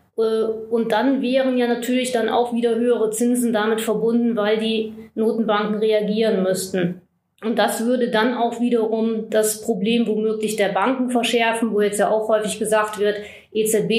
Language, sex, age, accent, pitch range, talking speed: German, female, 20-39, German, 210-240 Hz, 160 wpm